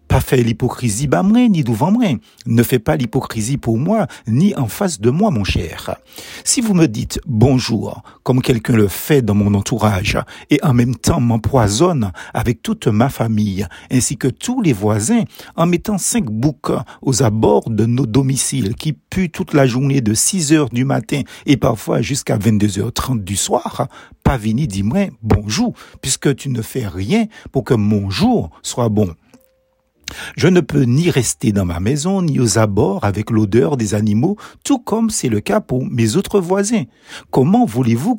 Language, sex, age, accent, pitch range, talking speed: French, male, 50-69, French, 110-175 Hz, 175 wpm